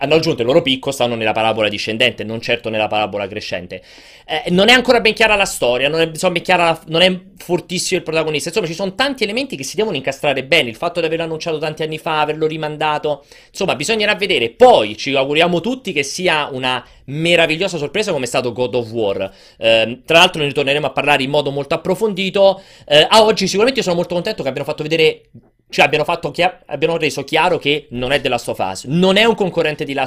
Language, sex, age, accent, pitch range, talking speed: Italian, male, 30-49, native, 125-170 Hz, 220 wpm